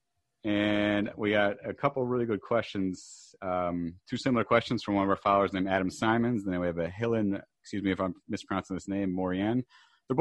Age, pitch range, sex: 30-49, 90-105 Hz, male